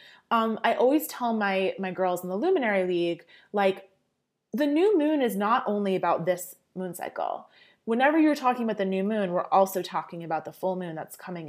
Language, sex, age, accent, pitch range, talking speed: English, female, 30-49, American, 185-250 Hz, 200 wpm